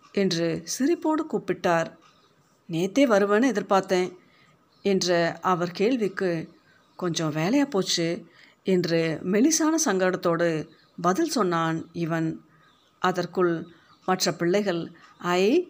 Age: 50-69